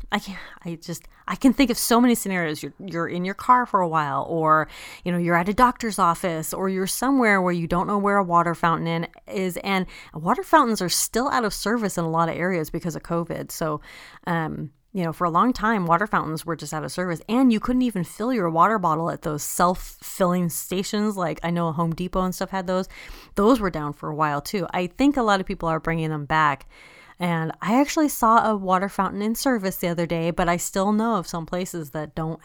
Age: 30-49